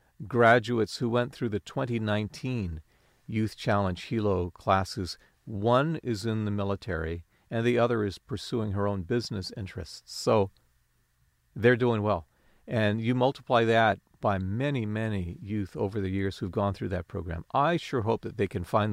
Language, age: English, 50-69